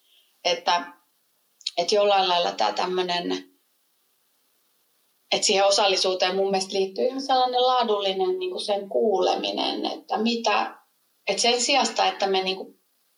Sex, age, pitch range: female, 30-49, 175-215 Hz